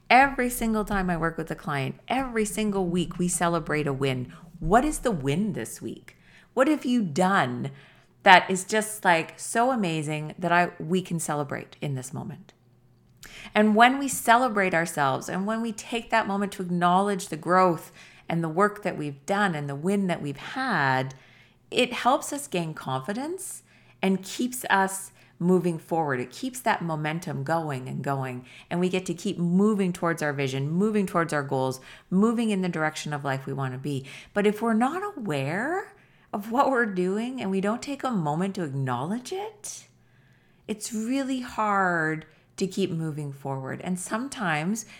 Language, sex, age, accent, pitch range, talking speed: English, female, 40-59, American, 155-225 Hz, 175 wpm